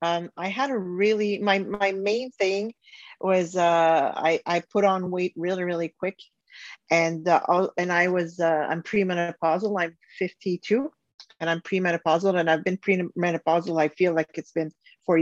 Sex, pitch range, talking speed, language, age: female, 165-195 Hz, 170 wpm, English, 40-59